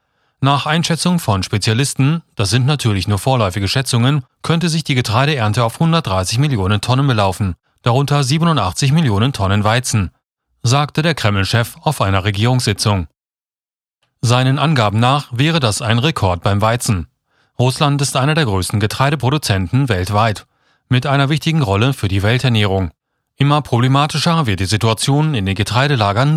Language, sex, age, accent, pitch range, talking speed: German, male, 40-59, German, 110-145 Hz, 140 wpm